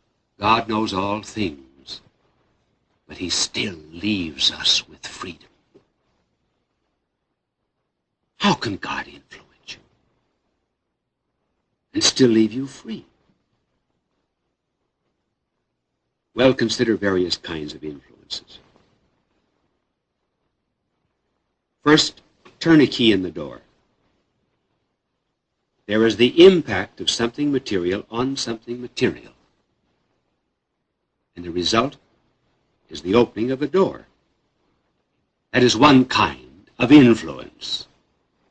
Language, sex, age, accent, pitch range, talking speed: English, male, 60-79, American, 110-150 Hz, 90 wpm